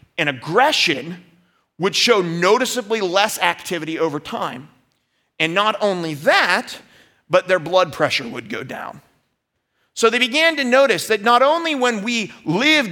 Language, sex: English, male